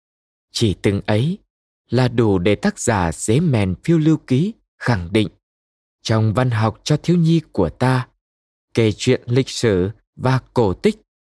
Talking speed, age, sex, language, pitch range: 160 wpm, 20-39, male, Vietnamese, 105-145 Hz